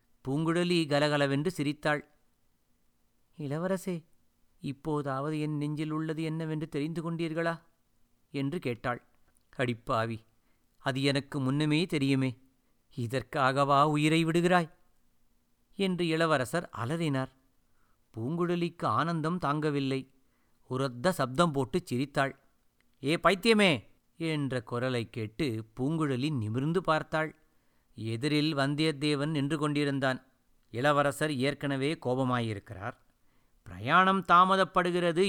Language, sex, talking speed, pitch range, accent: Tamil, male, 80 wpm, 130-165 Hz, native